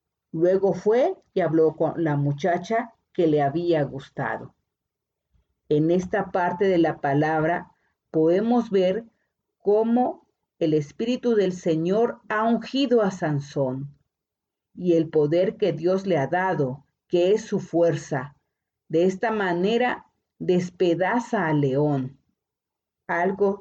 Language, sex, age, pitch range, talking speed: Spanish, female, 50-69, 160-205 Hz, 120 wpm